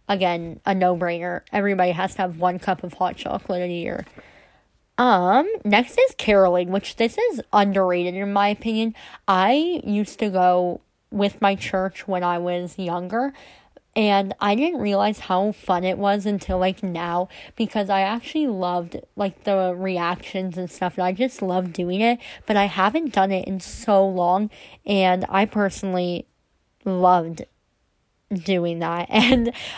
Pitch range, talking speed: 180-220 Hz, 155 wpm